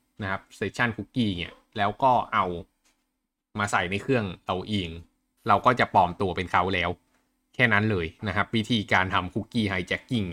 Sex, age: male, 20-39